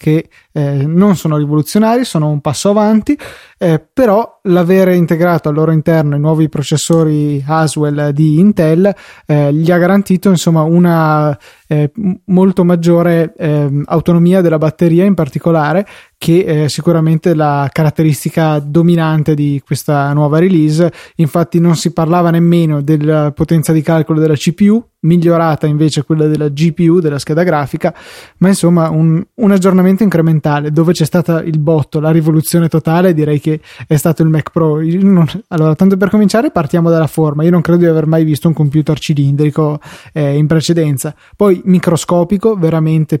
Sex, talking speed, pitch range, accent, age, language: male, 155 wpm, 155-175 Hz, native, 20-39, Italian